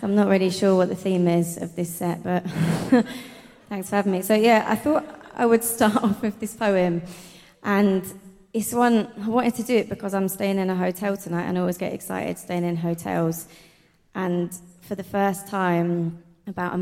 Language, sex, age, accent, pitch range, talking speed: English, female, 20-39, British, 165-195 Hz, 205 wpm